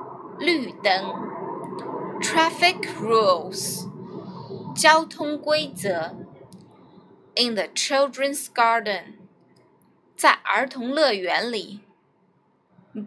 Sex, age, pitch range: female, 20-39, 215-315 Hz